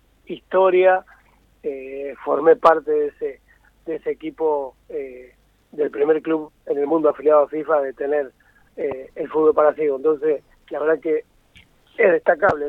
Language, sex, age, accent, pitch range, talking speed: Spanish, male, 40-59, Argentinian, 145-225 Hz, 155 wpm